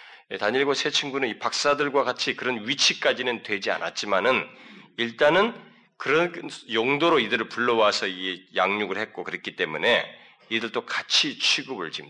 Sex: male